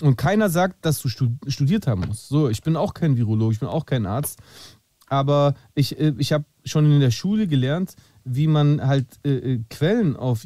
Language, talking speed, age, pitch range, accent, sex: German, 200 wpm, 40-59, 120-160 Hz, German, male